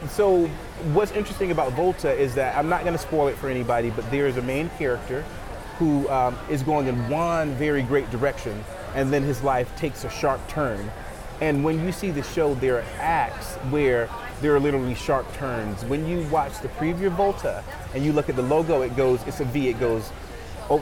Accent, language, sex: American, English, male